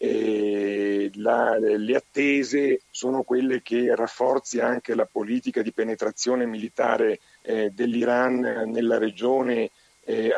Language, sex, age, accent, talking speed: Italian, male, 50-69, native, 105 wpm